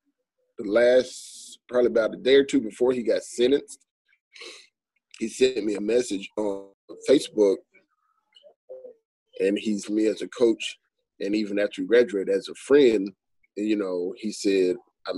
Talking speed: 150 wpm